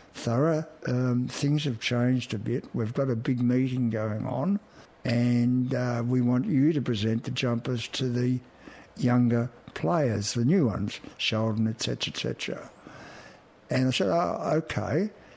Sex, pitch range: male, 120-150 Hz